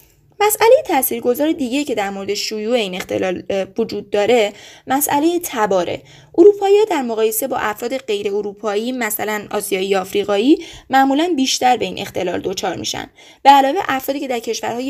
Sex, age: female, 20-39